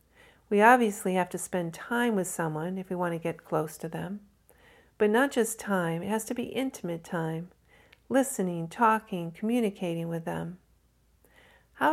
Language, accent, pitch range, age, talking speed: English, American, 170-220 Hz, 50-69, 160 wpm